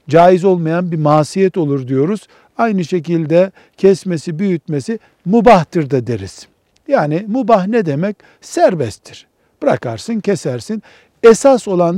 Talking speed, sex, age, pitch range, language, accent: 110 wpm, male, 60-79, 145-200 Hz, Turkish, native